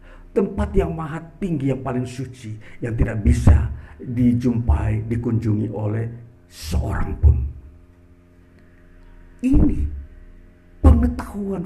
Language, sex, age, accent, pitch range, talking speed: Indonesian, male, 50-69, native, 90-135 Hz, 85 wpm